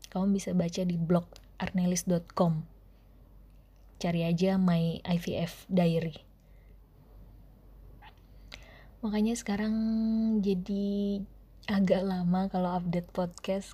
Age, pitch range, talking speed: 20-39, 175-195 Hz, 85 wpm